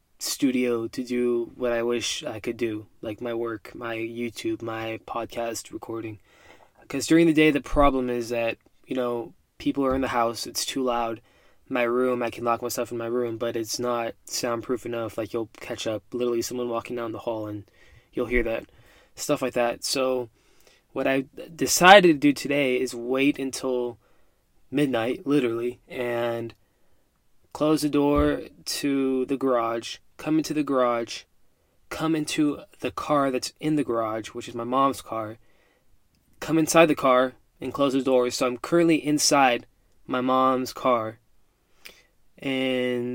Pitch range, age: 115-130 Hz, 20-39